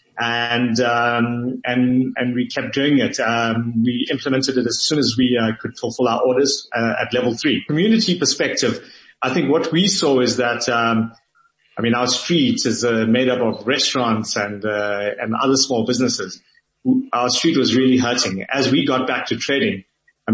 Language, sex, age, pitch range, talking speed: English, male, 30-49, 115-135 Hz, 185 wpm